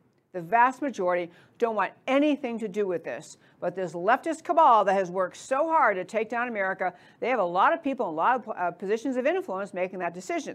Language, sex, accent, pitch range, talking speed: English, female, American, 190-270 Hz, 220 wpm